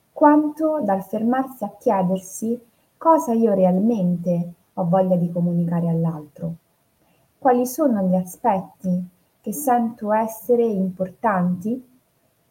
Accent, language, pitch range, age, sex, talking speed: native, Italian, 175-230 Hz, 20-39, female, 100 wpm